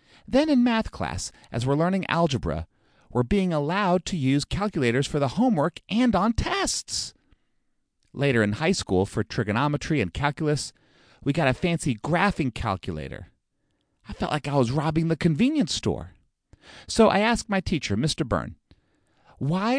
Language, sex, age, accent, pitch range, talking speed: English, male, 40-59, American, 115-180 Hz, 155 wpm